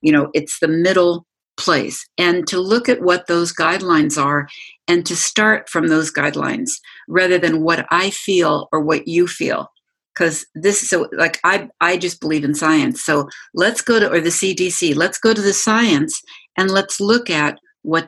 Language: English